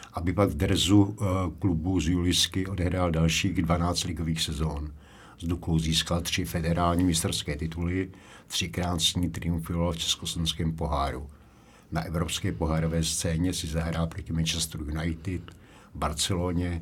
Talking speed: 120 wpm